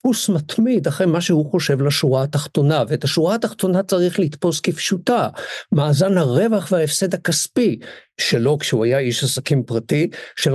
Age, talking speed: 50-69, 135 wpm